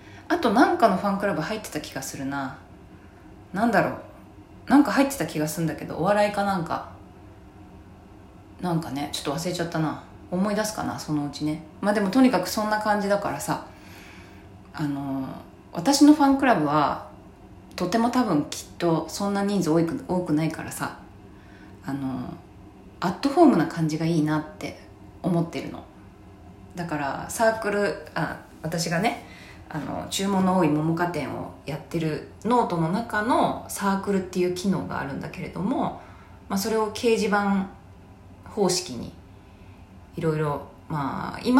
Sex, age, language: female, 20-39, Japanese